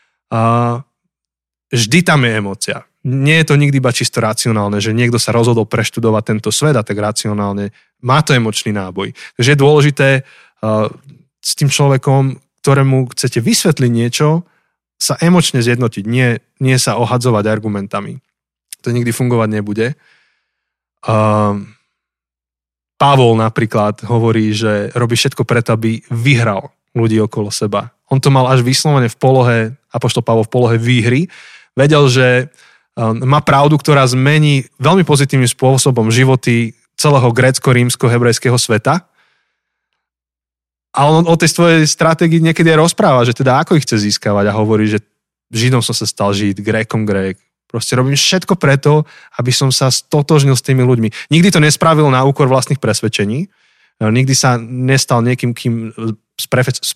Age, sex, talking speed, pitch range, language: 20-39, male, 140 wpm, 110-140 Hz, Slovak